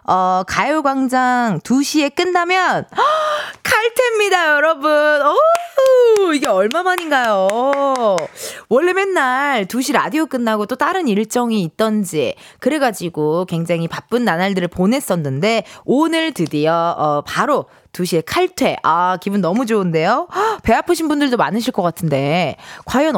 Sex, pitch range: female, 190-310 Hz